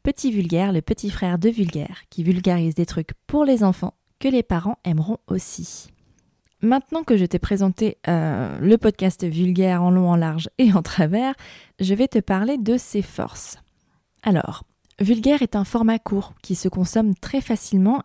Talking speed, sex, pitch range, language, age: 175 wpm, female, 175-220 Hz, French, 20-39